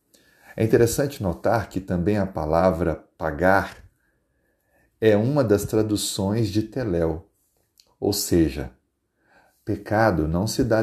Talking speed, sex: 110 wpm, male